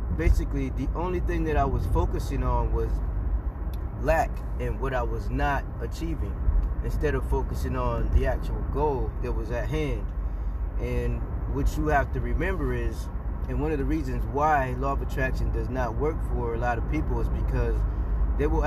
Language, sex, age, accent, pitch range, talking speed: English, male, 20-39, American, 65-80 Hz, 180 wpm